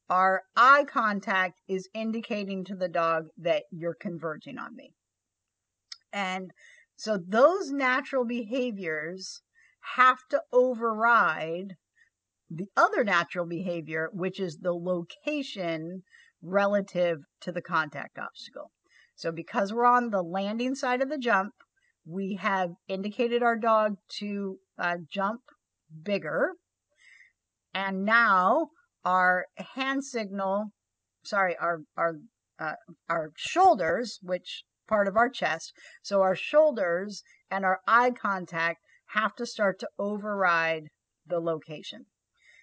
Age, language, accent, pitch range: 50-69, English, American, 175-240 Hz